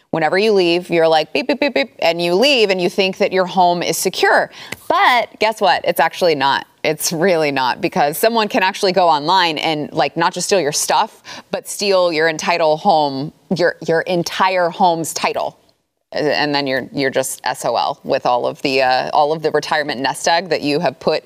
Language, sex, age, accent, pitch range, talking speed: English, female, 20-39, American, 155-200 Hz, 205 wpm